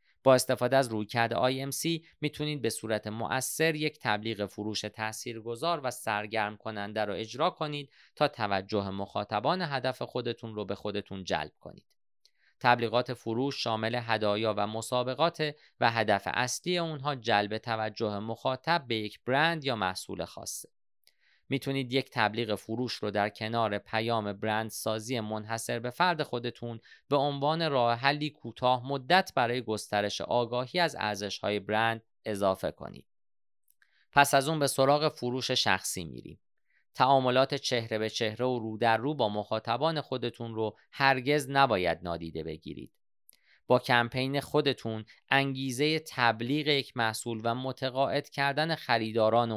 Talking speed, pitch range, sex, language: 135 wpm, 110-135 Hz, male, Persian